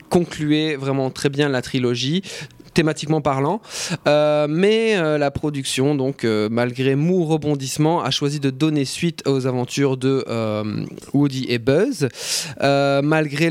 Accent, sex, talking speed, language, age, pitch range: French, male, 140 wpm, French, 20-39, 130-155 Hz